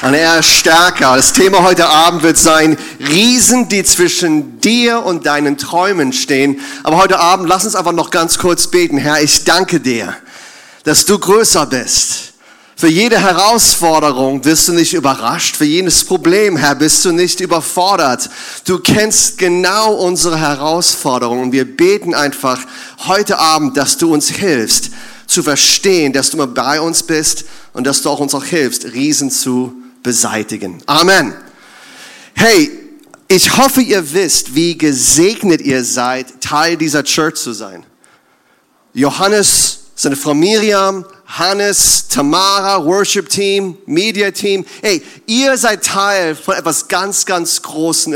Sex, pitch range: male, 150-220 Hz